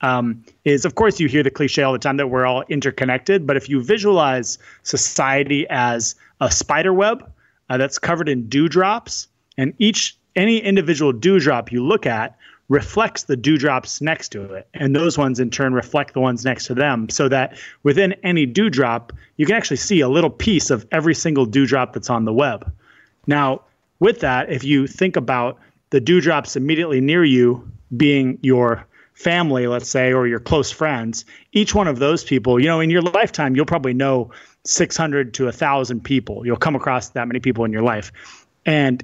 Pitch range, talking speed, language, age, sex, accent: 125-155 Hz, 195 wpm, English, 30-49, male, American